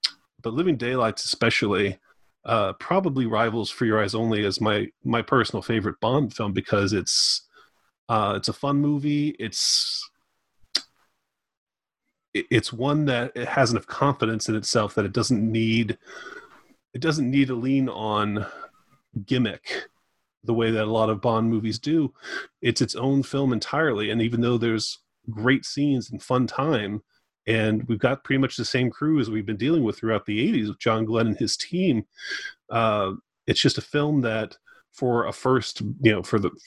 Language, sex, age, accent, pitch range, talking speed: English, male, 30-49, American, 110-130 Hz, 170 wpm